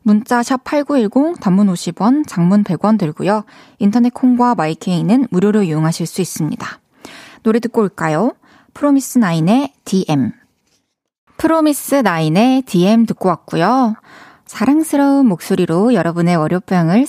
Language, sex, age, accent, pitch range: Korean, female, 20-39, native, 185-260 Hz